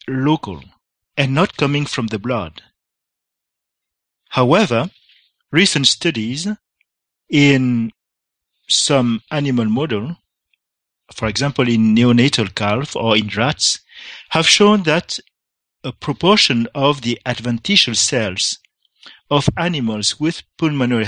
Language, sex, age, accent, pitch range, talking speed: English, male, 50-69, French, 115-160 Hz, 100 wpm